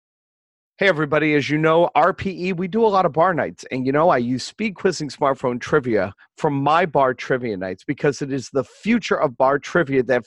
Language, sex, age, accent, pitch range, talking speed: English, male, 40-59, American, 130-175 Hz, 210 wpm